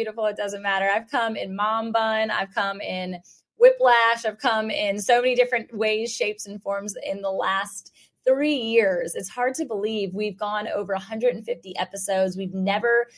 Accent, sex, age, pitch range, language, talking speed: American, female, 20-39, 180-220 Hz, English, 175 wpm